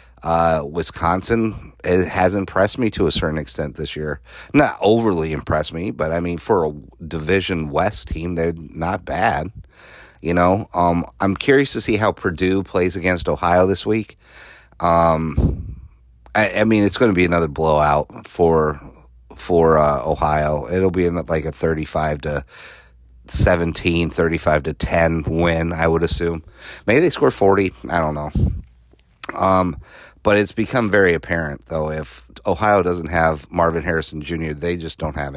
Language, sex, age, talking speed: English, male, 30-49, 160 wpm